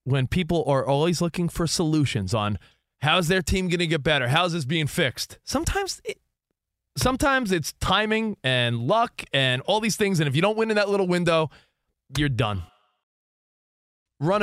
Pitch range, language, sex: 130-200 Hz, English, male